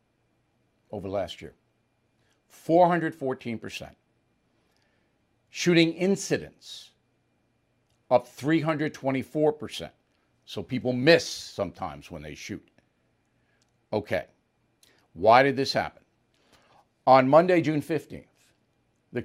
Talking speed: 95 wpm